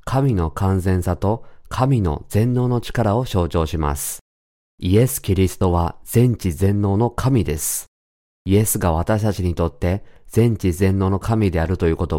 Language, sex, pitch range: Japanese, male, 85-115 Hz